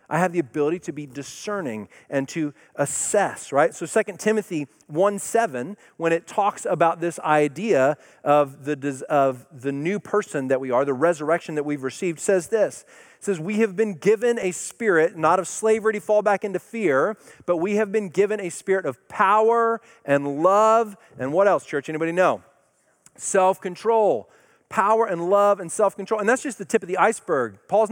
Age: 40-59